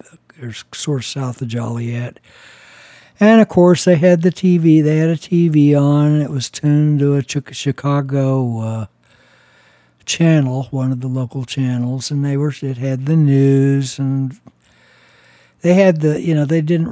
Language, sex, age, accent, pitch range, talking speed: English, male, 60-79, American, 115-150 Hz, 165 wpm